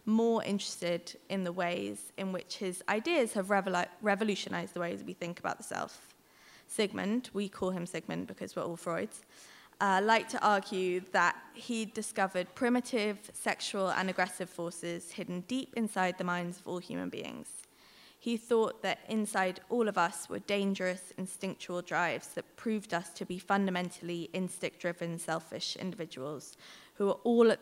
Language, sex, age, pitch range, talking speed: English, female, 20-39, 175-210 Hz, 160 wpm